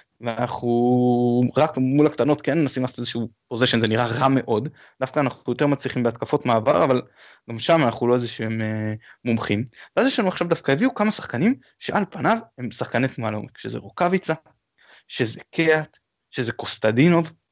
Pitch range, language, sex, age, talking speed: 115-145 Hz, Hebrew, male, 20-39, 165 wpm